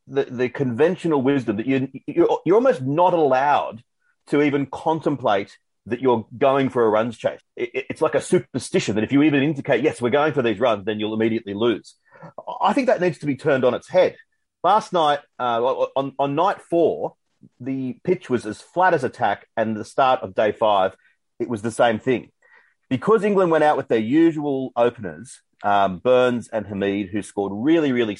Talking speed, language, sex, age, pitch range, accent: 195 wpm, English, male, 30-49, 120-160 Hz, Australian